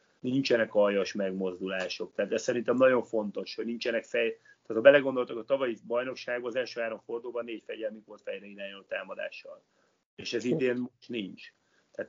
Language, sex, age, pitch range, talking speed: Hungarian, male, 30-49, 105-125 Hz, 160 wpm